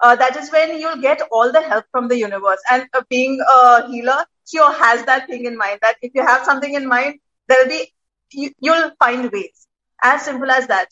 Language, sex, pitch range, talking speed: Hindi, female, 235-285 Hz, 225 wpm